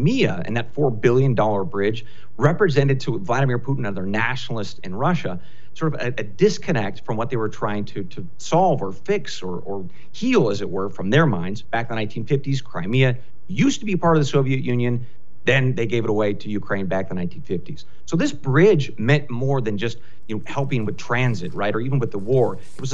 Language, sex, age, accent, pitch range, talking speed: English, male, 40-59, American, 110-150 Hz, 215 wpm